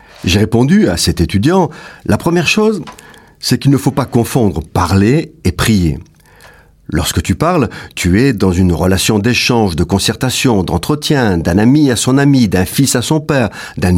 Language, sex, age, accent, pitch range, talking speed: French, male, 50-69, French, 95-140 Hz, 175 wpm